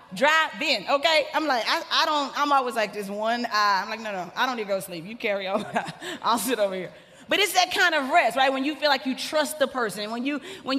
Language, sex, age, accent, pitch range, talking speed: English, female, 30-49, American, 265-330 Hz, 280 wpm